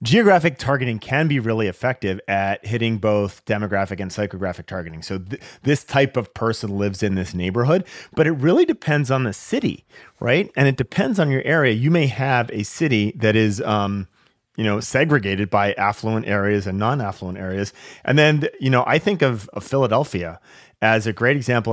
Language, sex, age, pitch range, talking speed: English, male, 30-49, 95-130 Hz, 190 wpm